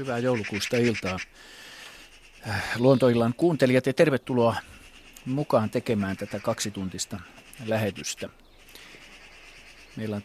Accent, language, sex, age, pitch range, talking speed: native, Finnish, male, 50-69, 100-125 Hz, 80 wpm